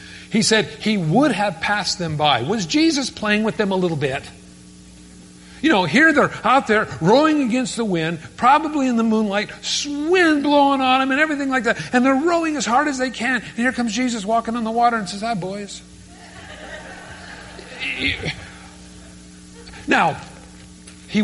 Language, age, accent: English, 50-69, American